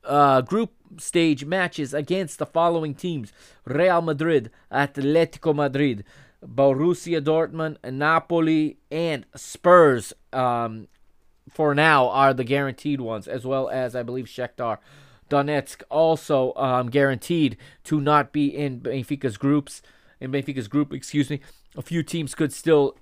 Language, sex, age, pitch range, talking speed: English, male, 20-39, 130-160 Hz, 130 wpm